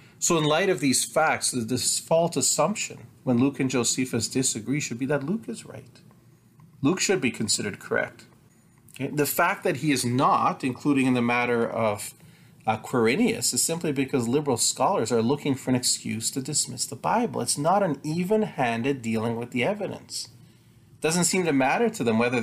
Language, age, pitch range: English, 40-59, 115-155 Hz